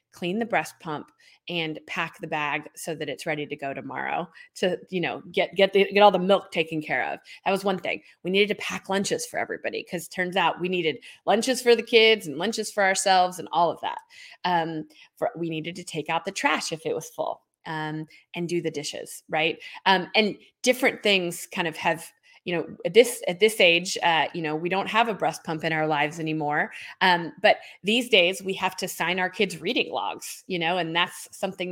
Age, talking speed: 20-39, 225 wpm